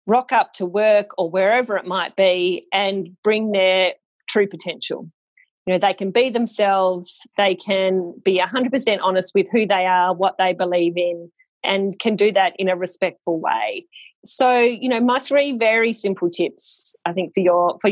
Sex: female